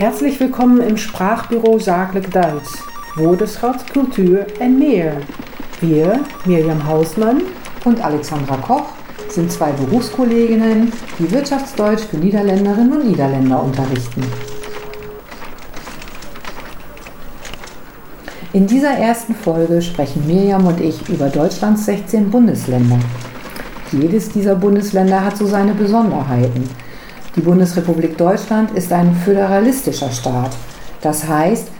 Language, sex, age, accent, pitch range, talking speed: German, female, 50-69, German, 155-220 Hz, 100 wpm